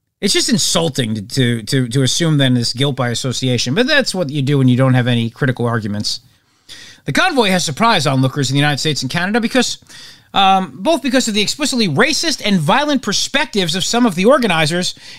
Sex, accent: male, American